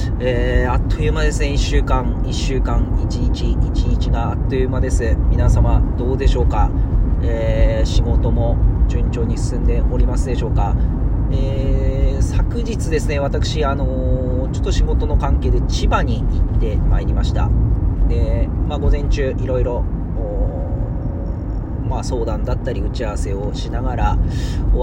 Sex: male